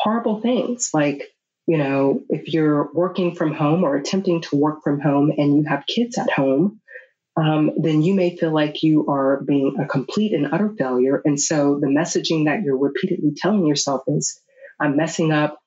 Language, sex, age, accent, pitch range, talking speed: English, female, 30-49, American, 145-180 Hz, 190 wpm